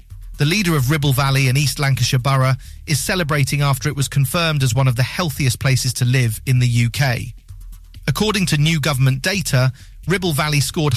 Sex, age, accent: male, 40-59, British